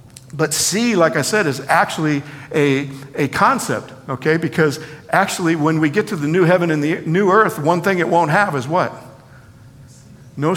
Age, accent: 50-69, American